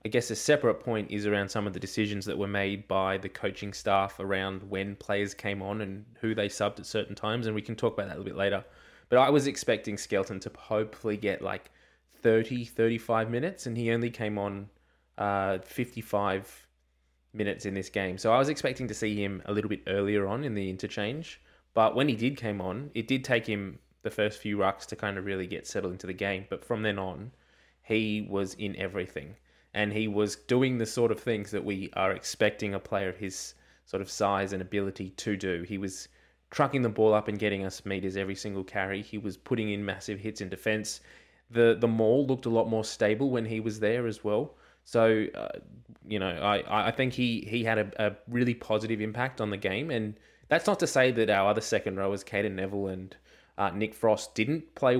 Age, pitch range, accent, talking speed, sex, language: 20-39, 100-115 Hz, Australian, 225 wpm, male, English